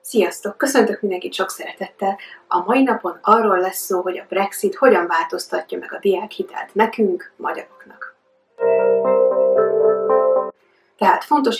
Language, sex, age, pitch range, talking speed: Hungarian, female, 30-49, 180-215 Hz, 120 wpm